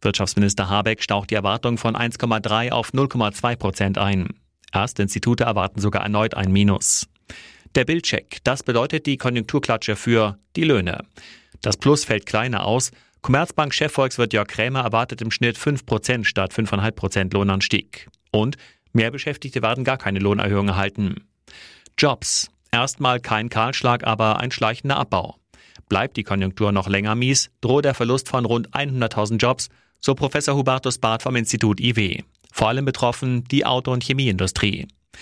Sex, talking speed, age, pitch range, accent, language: male, 150 wpm, 40-59, 105-130 Hz, German, German